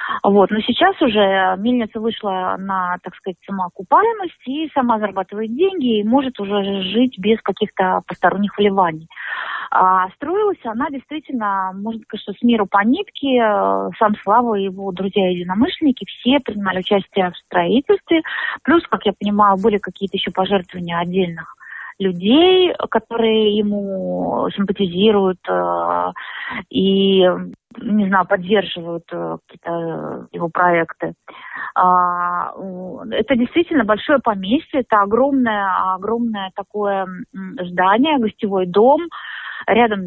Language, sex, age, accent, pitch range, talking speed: Russian, female, 30-49, native, 190-245 Hz, 120 wpm